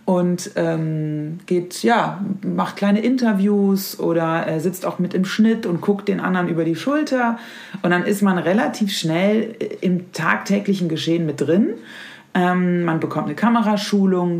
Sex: female